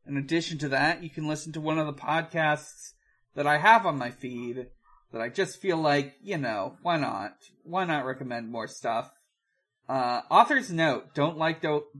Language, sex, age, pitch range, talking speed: English, male, 30-49, 125-165 Hz, 190 wpm